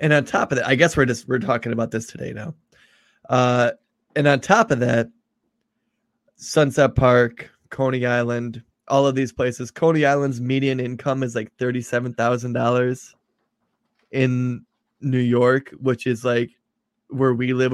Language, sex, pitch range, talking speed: English, male, 125-160 Hz, 150 wpm